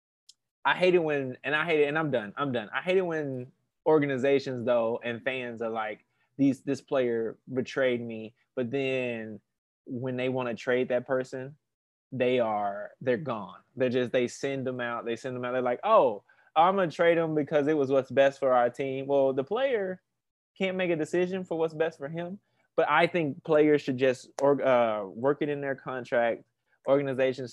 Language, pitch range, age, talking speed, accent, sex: English, 120-155 Hz, 20-39, 200 wpm, American, male